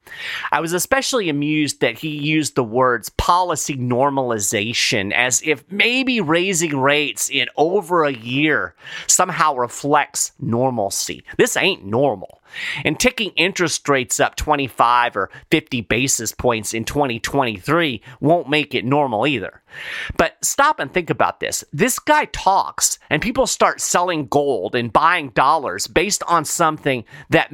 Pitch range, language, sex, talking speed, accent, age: 125-175 Hz, English, male, 140 wpm, American, 30-49